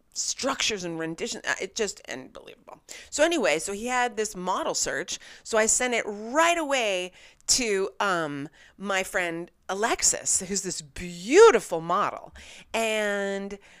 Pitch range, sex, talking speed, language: 175-250 Hz, female, 125 wpm, English